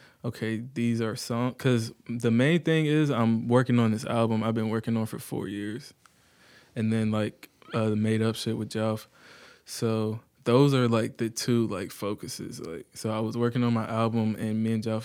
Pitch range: 110-115 Hz